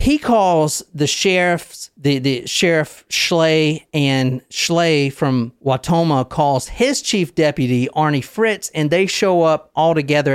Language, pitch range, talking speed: English, 130-180 Hz, 140 wpm